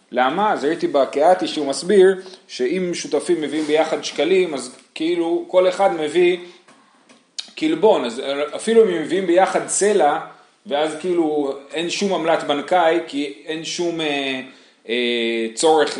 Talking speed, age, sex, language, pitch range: 130 wpm, 30-49, male, Hebrew, 150-220 Hz